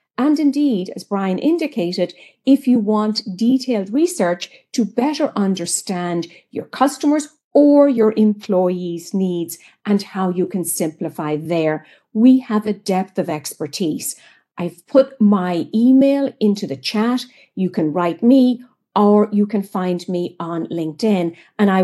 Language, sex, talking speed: English, female, 140 wpm